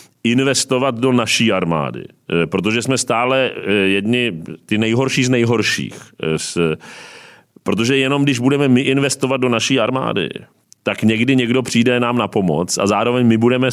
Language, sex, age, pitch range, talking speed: Czech, male, 40-59, 115-140 Hz, 140 wpm